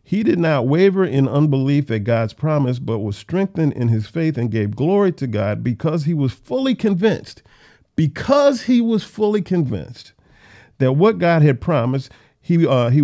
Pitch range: 130-175 Hz